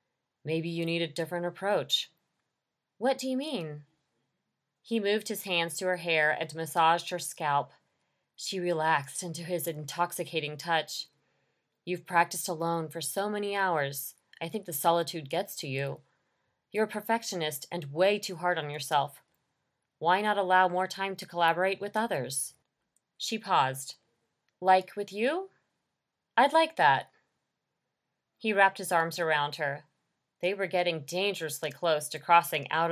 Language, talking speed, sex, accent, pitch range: English, 150 wpm, female, American, 150-190 Hz